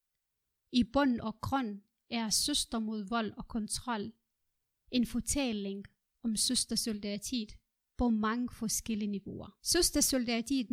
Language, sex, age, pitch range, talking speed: Danish, female, 30-49, 220-265 Hz, 105 wpm